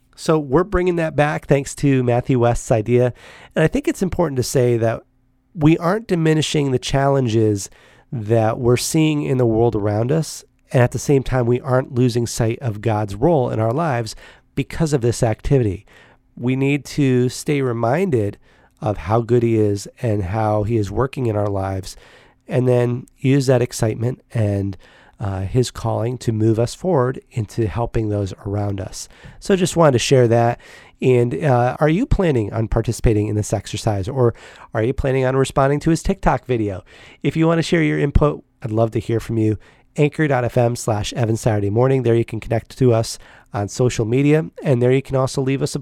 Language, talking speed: English, 195 wpm